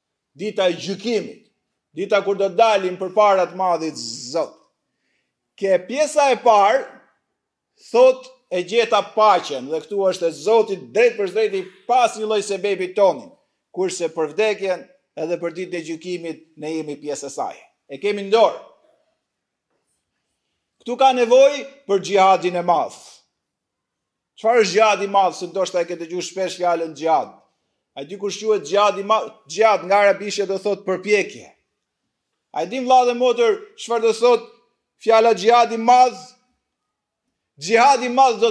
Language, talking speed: English, 100 wpm